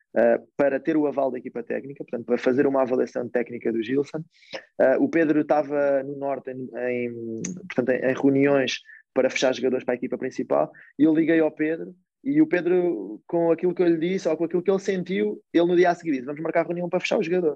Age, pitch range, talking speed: 20-39, 130-160 Hz, 235 wpm